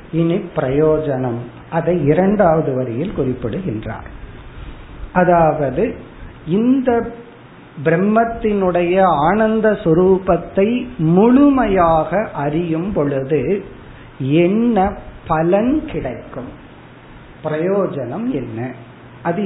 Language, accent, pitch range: Tamil, native, 150-205 Hz